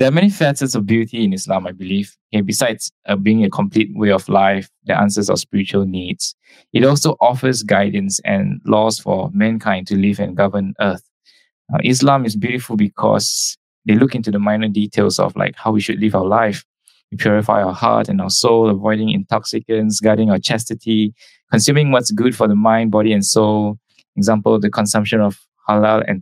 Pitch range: 105-115 Hz